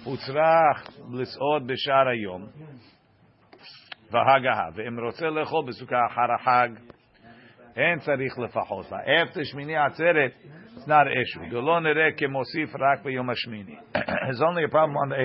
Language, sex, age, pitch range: English, male, 50-69, 115-145 Hz